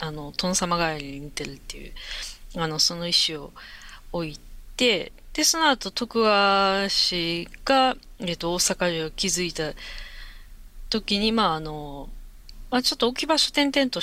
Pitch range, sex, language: 160-260 Hz, female, Japanese